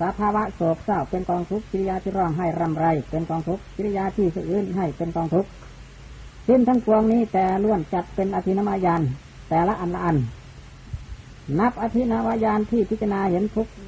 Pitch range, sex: 165-215 Hz, female